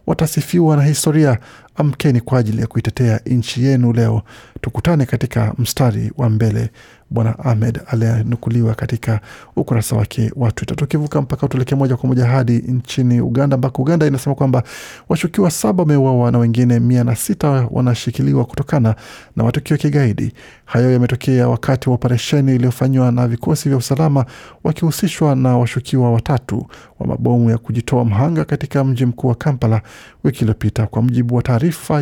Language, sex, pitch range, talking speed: Swahili, male, 115-140 Hz, 145 wpm